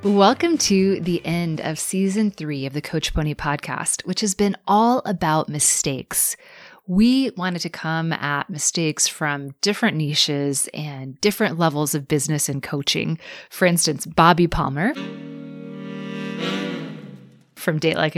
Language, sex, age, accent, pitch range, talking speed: English, female, 20-39, American, 155-210 Hz, 135 wpm